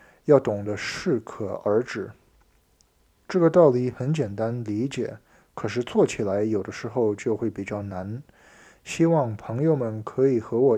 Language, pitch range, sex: Chinese, 105-140 Hz, male